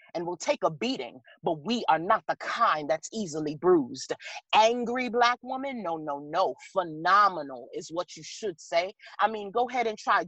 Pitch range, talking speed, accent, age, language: 165-235 Hz, 185 wpm, American, 30-49, English